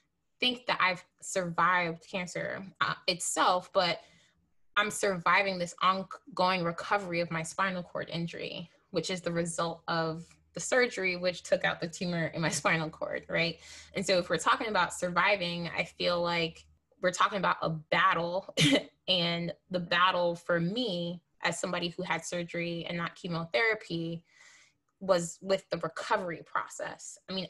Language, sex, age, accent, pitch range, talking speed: English, female, 20-39, American, 170-190 Hz, 155 wpm